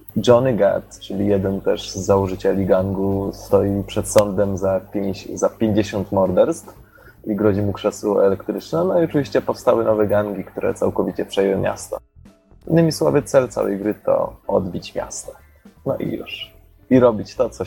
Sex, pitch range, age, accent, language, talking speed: male, 100-110 Hz, 20-39, native, Polish, 155 wpm